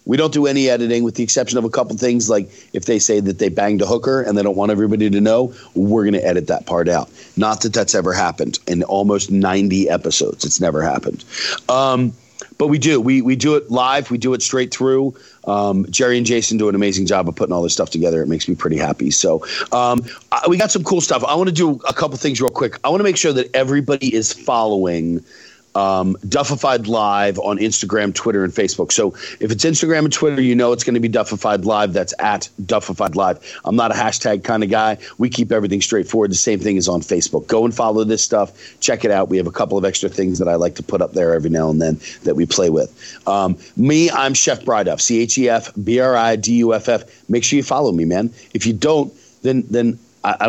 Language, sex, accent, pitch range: English, male, American, 95-125 Hz